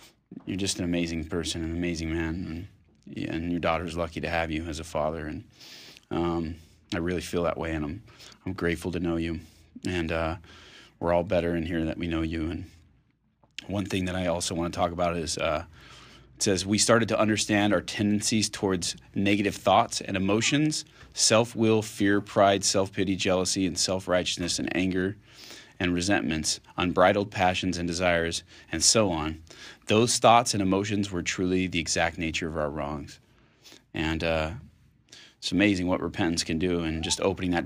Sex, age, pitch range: male, 30-49, 80-95 Hz